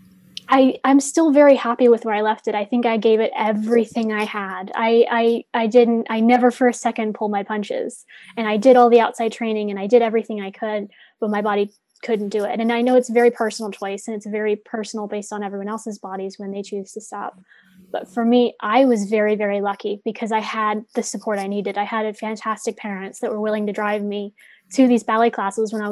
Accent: American